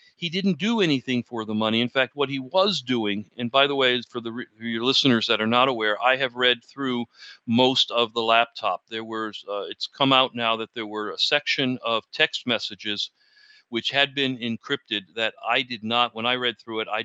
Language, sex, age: English, male, 40-59